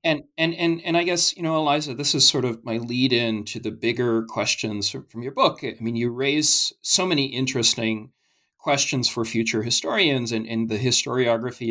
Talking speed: 195 wpm